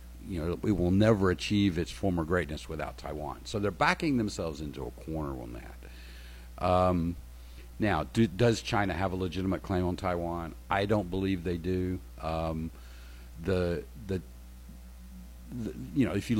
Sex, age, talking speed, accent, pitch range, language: male, 50-69, 160 wpm, American, 65-95 Hz, English